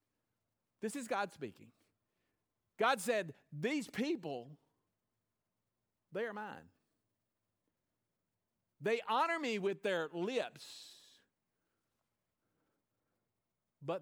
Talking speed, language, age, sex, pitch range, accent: 75 wpm, English, 50-69, male, 115-160 Hz, American